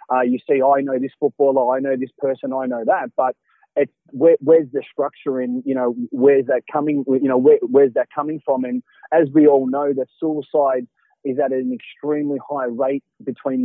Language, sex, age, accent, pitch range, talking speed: English, male, 30-49, Australian, 130-160 Hz, 210 wpm